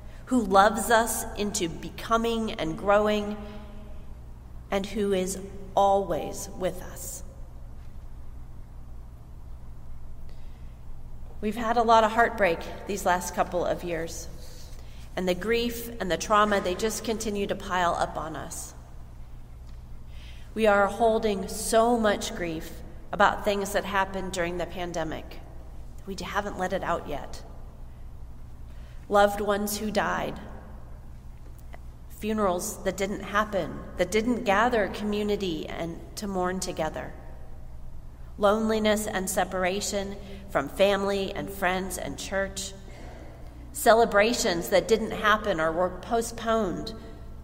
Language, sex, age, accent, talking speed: English, female, 40-59, American, 115 wpm